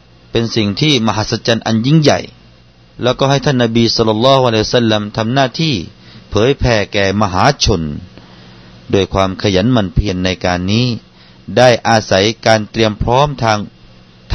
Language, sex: Thai, male